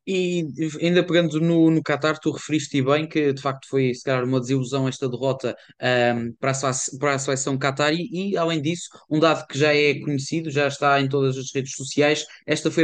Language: Portuguese